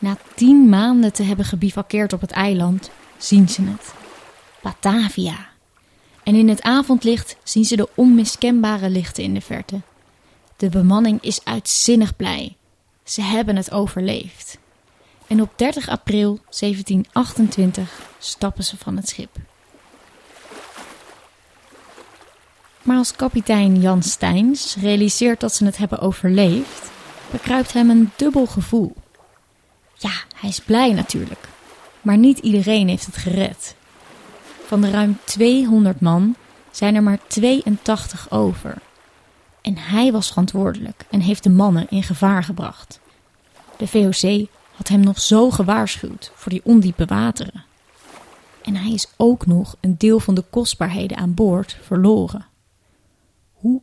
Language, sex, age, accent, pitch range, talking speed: Dutch, female, 20-39, Dutch, 190-225 Hz, 130 wpm